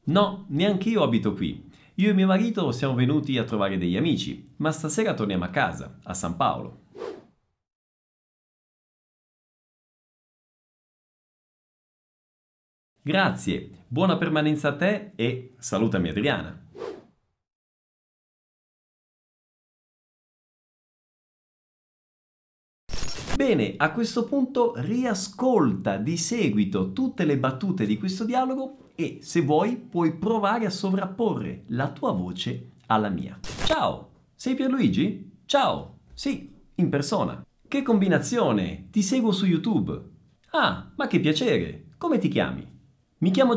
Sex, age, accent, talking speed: male, 50-69, native, 105 wpm